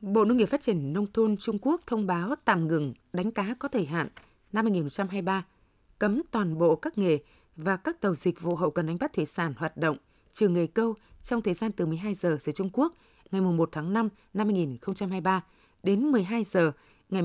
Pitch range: 175-225 Hz